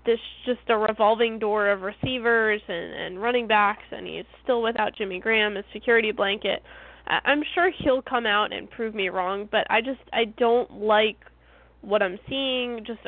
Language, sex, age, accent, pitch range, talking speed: English, female, 10-29, American, 205-245 Hz, 180 wpm